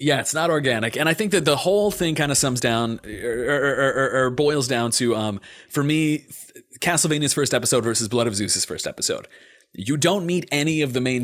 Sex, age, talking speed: male, 30-49, 225 wpm